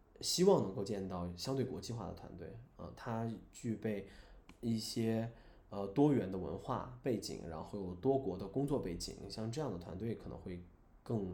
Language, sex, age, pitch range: Chinese, male, 20-39, 95-125 Hz